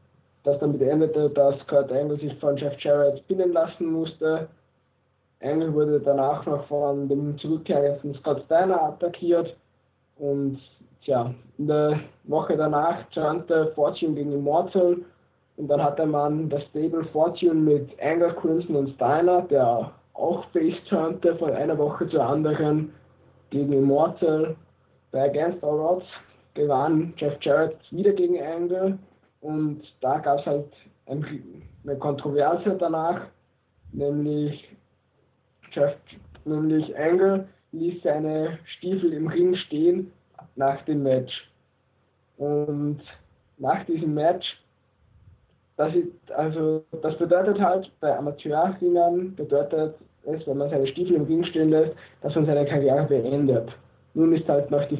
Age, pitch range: 20-39, 140-165 Hz